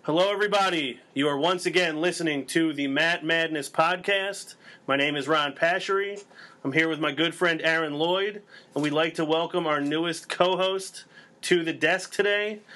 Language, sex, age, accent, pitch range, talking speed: English, male, 30-49, American, 155-180 Hz, 175 wpm